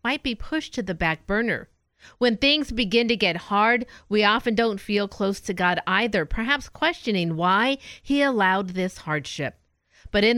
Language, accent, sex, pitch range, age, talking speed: English, American, female, 180-235 Hz, 50-69, 175 wpm